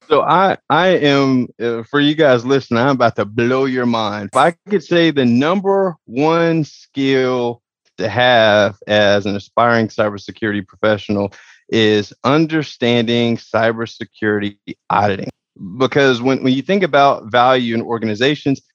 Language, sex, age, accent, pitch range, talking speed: English, male, 30-49, American, 110-140 Hz, 140 wpm